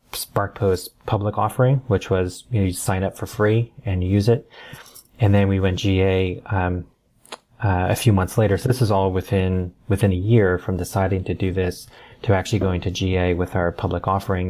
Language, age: English, 30-49